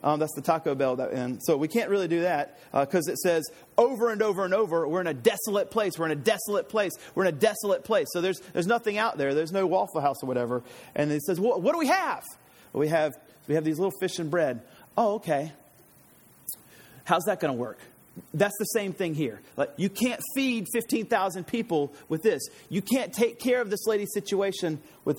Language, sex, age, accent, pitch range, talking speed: English, male, 30-49, American, 165-235 Hz, 225 wpm